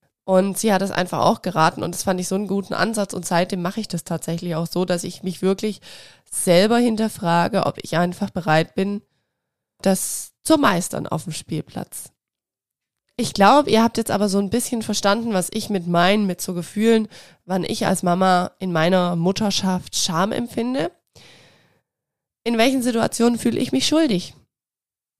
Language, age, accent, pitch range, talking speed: German, 20-39, German, 180-230 Hz, 175 wpm